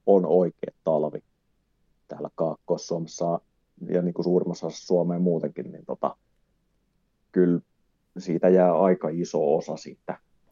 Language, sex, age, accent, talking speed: Finnish, male, 30-49, native, 115 wpm